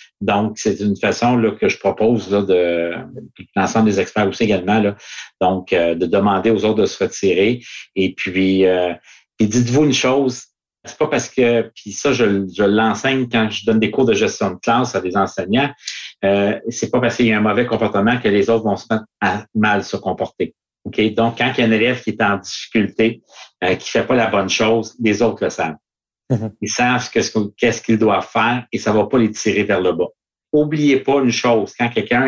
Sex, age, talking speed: male, 50-69, 215 wpm